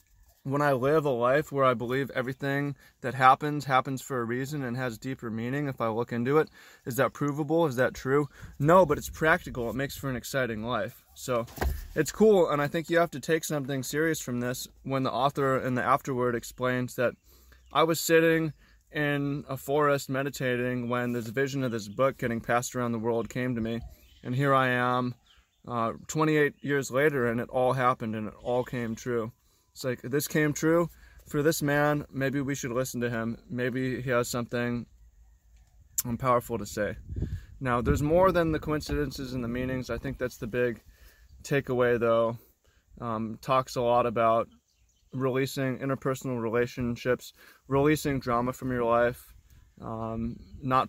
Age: 20-39